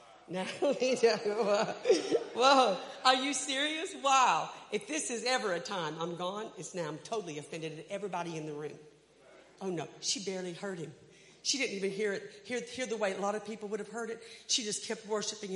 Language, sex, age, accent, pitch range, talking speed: English, female, 50-69, American, 160-255 Hz, 205 wpm